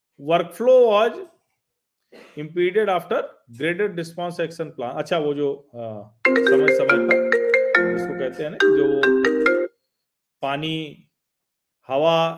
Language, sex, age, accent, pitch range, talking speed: Hindi, male, 40-59, native, 150-215 Hz, 80 wpm